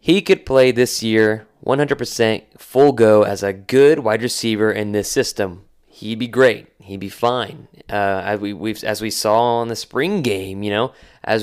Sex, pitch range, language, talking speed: male, 105-135 Hz, English, 190 wpm